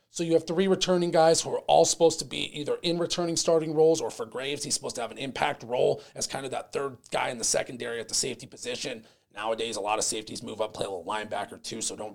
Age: 30-49